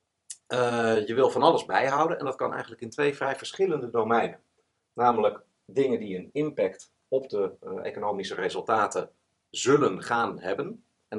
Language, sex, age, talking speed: Dutch, male, 40-59, 155 wpm